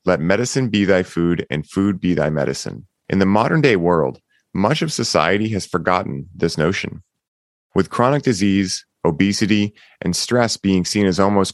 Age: 30-49